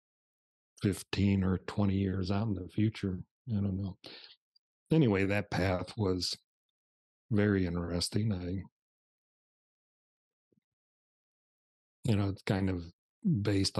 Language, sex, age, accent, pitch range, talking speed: English, male, 40-59, American, 90-100 Hz, 105 wpm